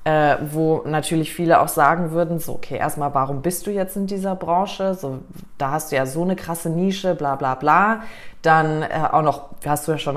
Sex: female